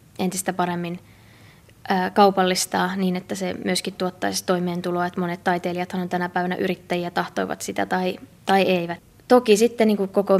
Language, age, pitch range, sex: Finnish, 20-39, 175-195 Hz, female